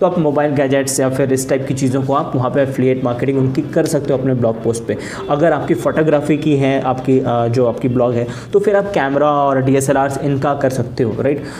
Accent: native